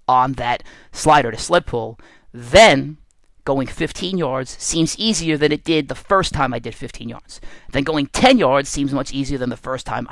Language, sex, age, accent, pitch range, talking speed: English, male, 30-49, American, 130-160 Hz, 195 wpm